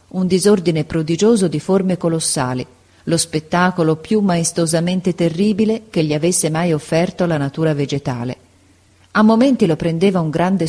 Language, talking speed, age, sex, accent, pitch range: Italian, 140 wpm, 40-59, female, native, 145-190 Hz